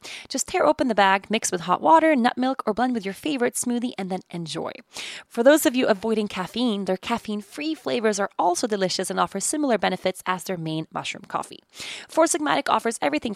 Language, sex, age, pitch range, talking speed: English, female, 20-39, 195-270 Hz, 200 wpm